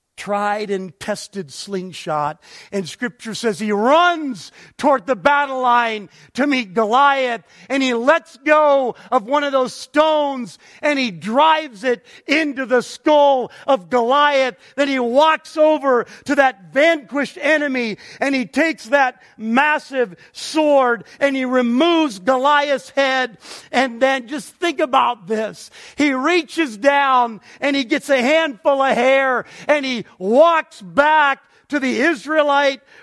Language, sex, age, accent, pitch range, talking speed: English, male, 50-69, American, 220-285 Hz, 140 wpm